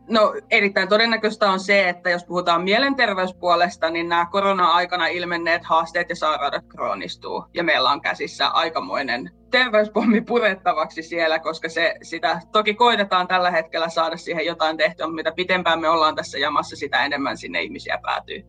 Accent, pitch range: native, 165-210 Hz